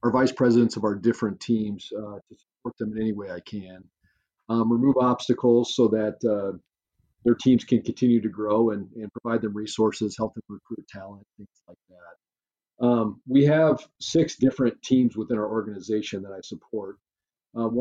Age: 40-59